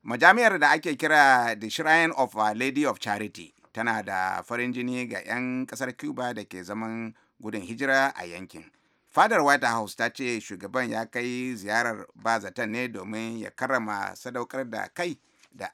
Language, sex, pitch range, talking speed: English, male, 110-130 Hz, 150 wpm